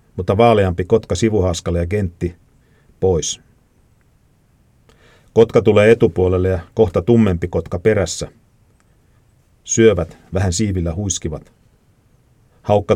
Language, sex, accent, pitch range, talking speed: Finnish, male, native, 90-115 Hz, 95 wpm